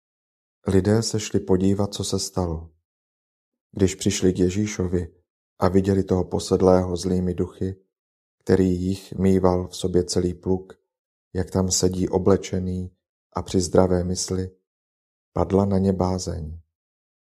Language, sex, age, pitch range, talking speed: Czech, male, 40-59, 90-95 Hz, 125 wpm